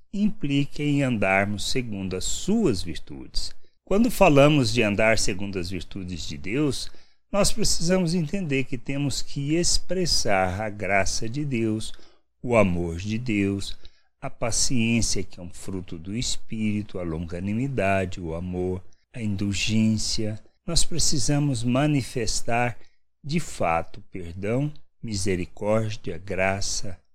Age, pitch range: 60-79, 95-135 Hz